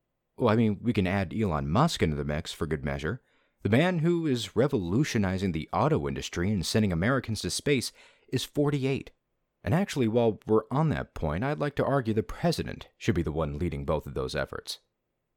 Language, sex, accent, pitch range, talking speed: English, male, American, 80-125 Hz, 200 wpm